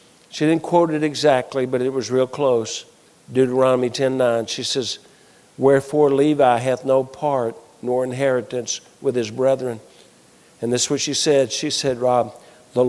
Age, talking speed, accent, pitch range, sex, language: 50-69, 160 wpm, American, 130-185 Hz, male, English